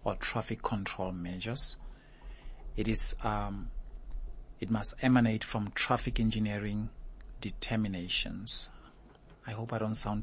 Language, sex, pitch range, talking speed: English, male, 100-120 Hz, 110 wpm